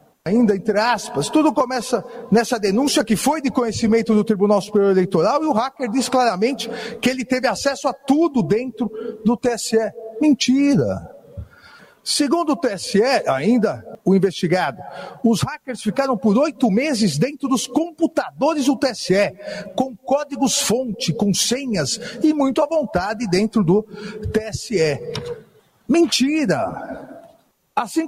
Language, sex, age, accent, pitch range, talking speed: Portuguese, male, 50-69, Brazilian, 220-275 Hz, 130 wpm